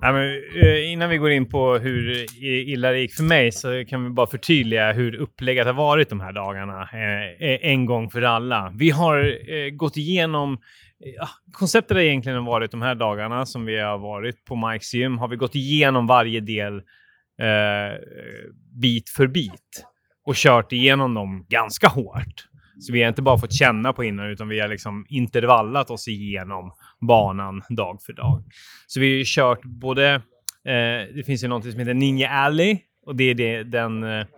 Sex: male